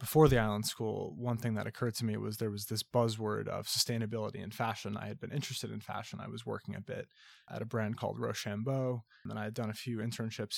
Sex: male